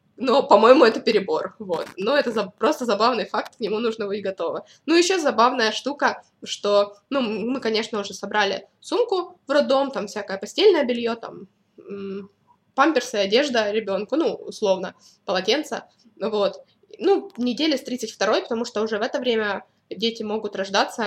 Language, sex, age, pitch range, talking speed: Russian, female, 20-39, 205-260 Hz, 155 wpm